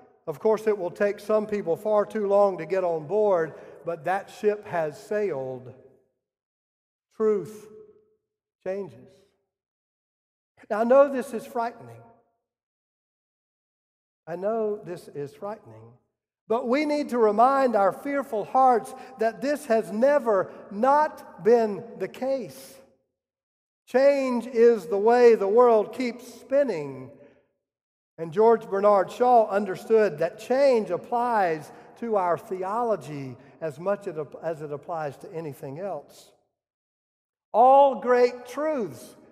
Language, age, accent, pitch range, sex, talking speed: English, 50-69, American, 170-250 Hz, male, 120 wpm